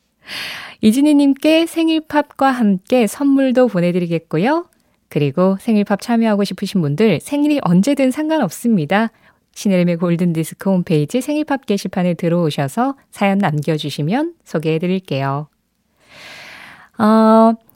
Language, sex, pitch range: Korean, female, 170-255 Hz